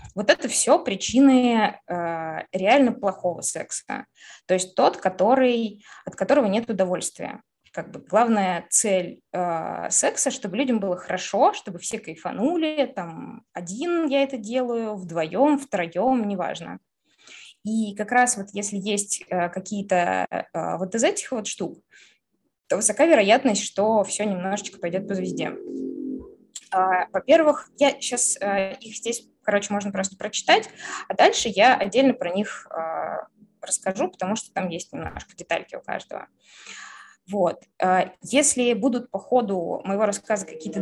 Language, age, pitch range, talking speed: Russian, 20-39, 185-255 Hz, 130 wpm